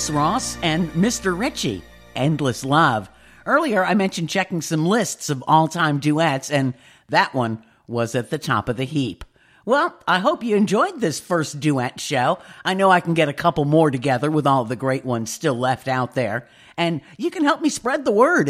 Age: 50-69